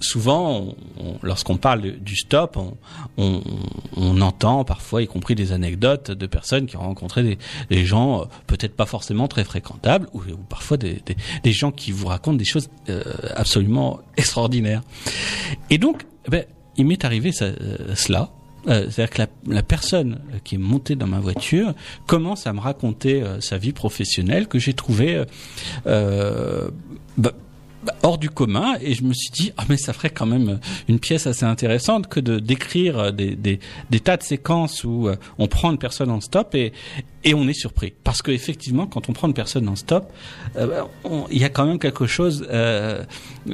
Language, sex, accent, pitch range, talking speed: French, male, French, 105-140 Hz, 190 wpm